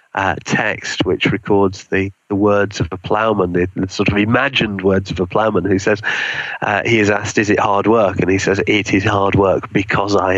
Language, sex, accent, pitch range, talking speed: English, male, British, 100-120 Hz, 220 wpm